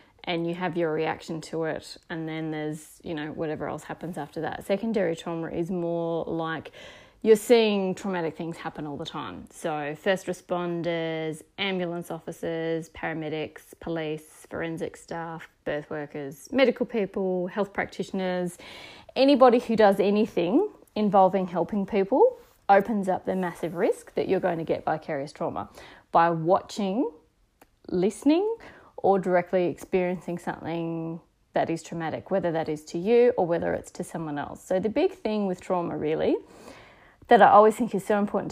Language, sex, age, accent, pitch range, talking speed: English, female, 20-39, Australian, 165-205 Hz, 155 wpm